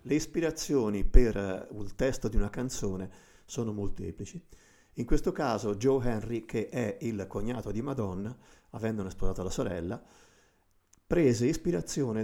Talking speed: 130 wpm